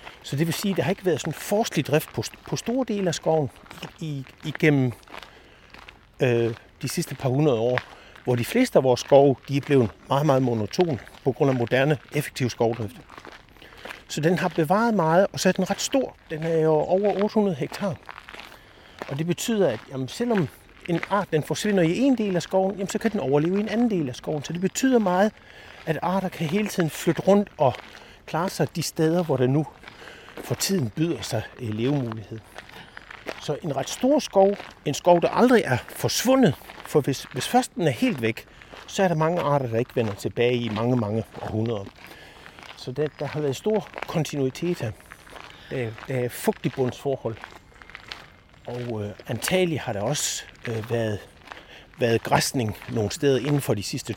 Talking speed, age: 190 wpm, 60-79